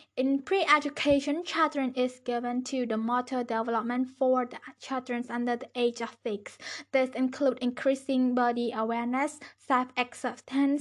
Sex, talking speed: female, 135 wpm